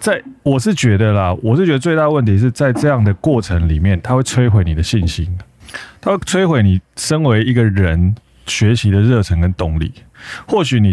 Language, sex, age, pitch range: Chinese, male, 30-49, 90-125 Hz